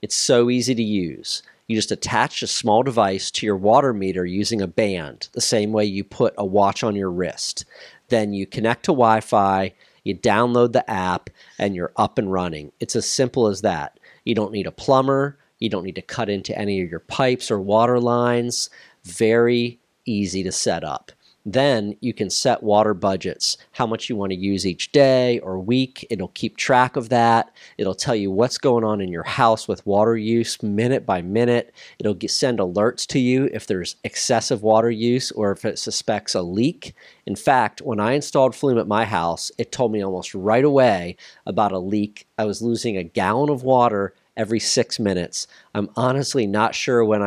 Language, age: English, 40-59